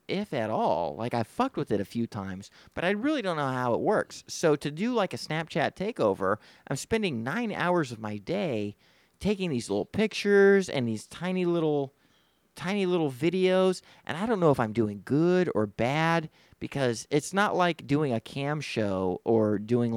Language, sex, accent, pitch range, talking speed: English, male, American, 110-175 Hz, 190 wpm